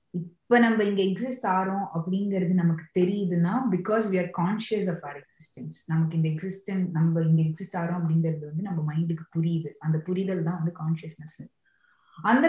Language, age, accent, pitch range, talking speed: Tamil, 20-39, native, 160-195 Hz, 65 wpm